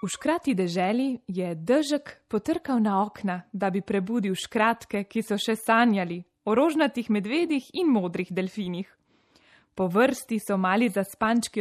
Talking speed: 135 wpm